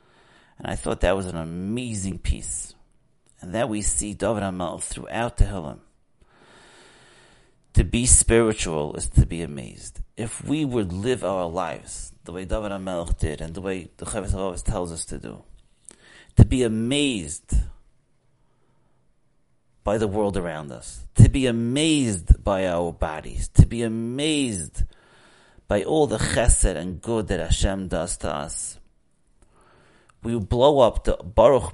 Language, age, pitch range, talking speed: English, 30-49, 85-115 Hz, 145 wpm